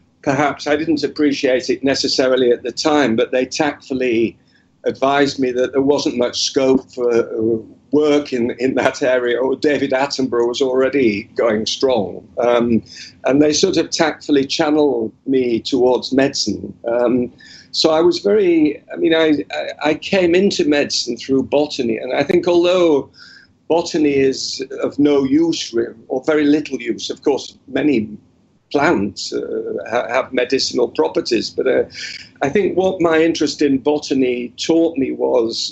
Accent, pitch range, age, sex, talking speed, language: British, 125-155 Hz, 50-69, male, 150 wpm, English